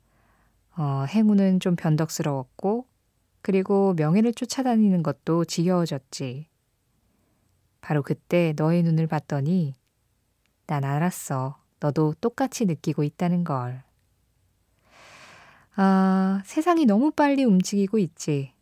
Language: Korean